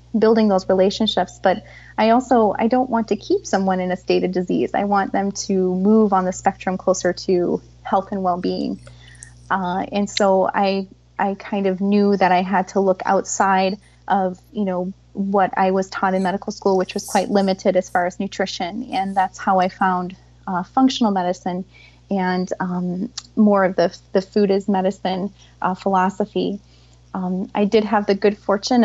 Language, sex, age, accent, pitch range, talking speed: English, female, 30-49, American, 185-205 Hz, 185 wpm